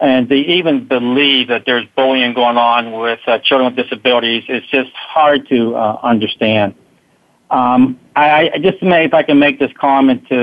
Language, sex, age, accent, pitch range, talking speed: English, male, 50-69, American, 125-155 Hz, 185 wpm